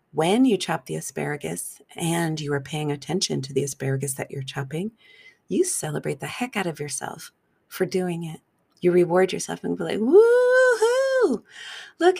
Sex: female